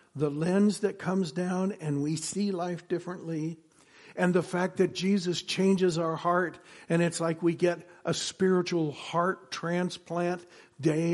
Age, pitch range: 60-79, 150-180 Hz